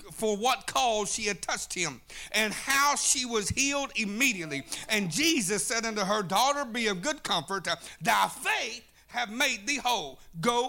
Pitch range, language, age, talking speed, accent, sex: 180-275 Hz, English, 50-69, 170 wpm, American, male